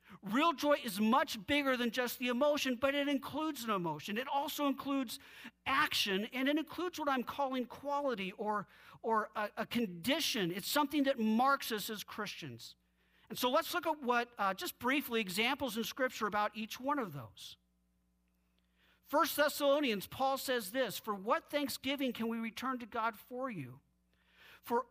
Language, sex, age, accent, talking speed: English, male, 50-69, American, 170 wpm